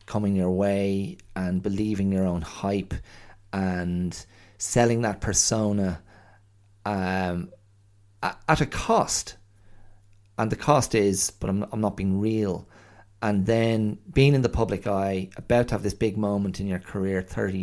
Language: English